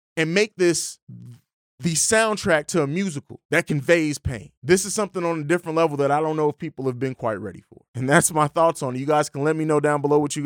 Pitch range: 115-155 Hz